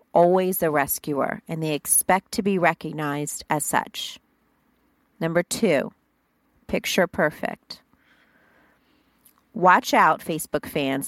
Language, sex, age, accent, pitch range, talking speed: English, female, 40-59, American, 165-240 Hz, 105 wpm